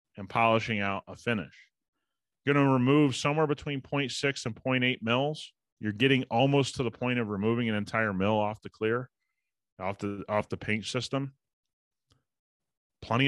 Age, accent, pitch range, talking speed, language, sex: 30-49, American, 105-130 Hz, 165 wpm, English, male